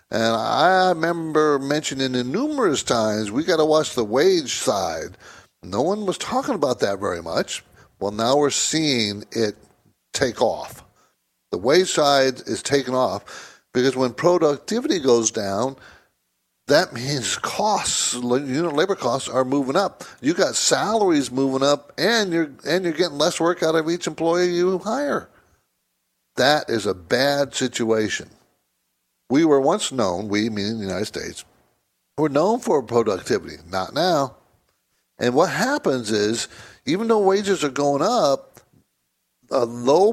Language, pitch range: English, 115-170 Hz